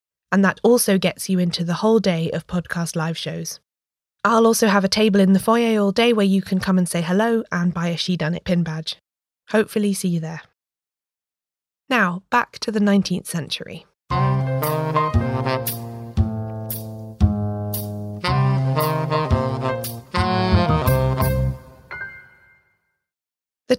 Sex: female